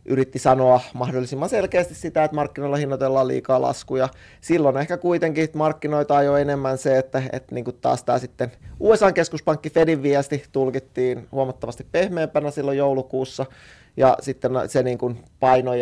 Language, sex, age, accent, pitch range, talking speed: Finnish, male, 30-49, native, 125-145 Hz, 140 wpm